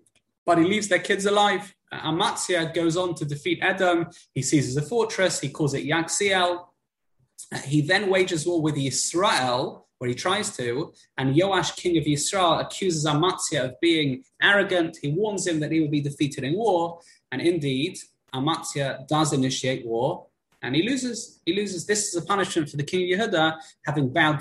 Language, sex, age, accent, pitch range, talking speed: English, male, 20-39, British, 130-170 Hz, 175 wpm